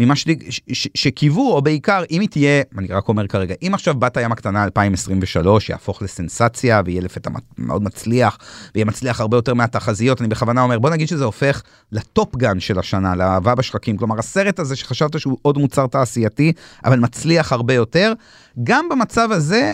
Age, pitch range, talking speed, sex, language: 30-49, 110-150 Hz, 165 wpm, male, Hebrew